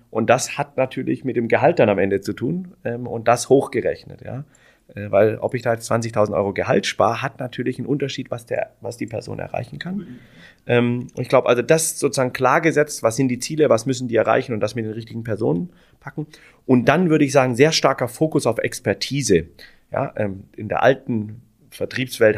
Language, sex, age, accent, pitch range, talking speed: German, male, 30-49, German, 110-130 Hz, 205 wpm